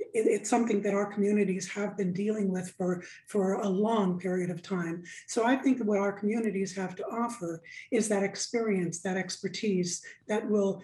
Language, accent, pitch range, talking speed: English, American, 190-220 Hz, 185 wpm